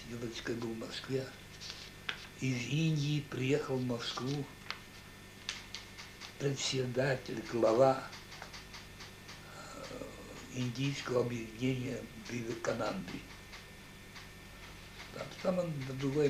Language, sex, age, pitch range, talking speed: Russian, male, 60-79, 100-135 Hz, 65 wpm